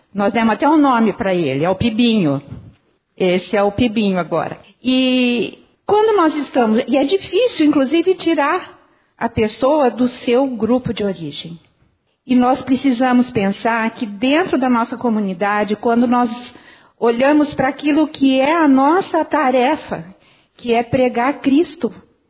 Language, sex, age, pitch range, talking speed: Portuguese, female, 50-69, 210-270 Hz, 145 wpm